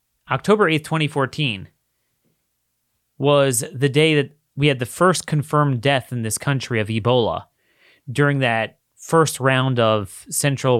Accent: American